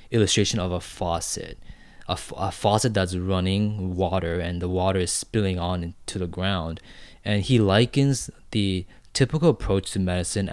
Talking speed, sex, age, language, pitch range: 160 wpm, male, 20-39, English, 90-105 Hz